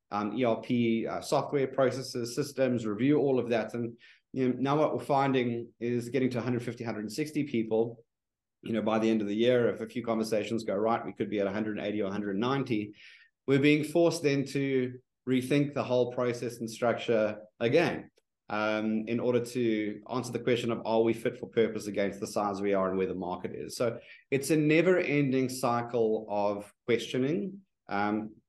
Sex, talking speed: male, 185 wpm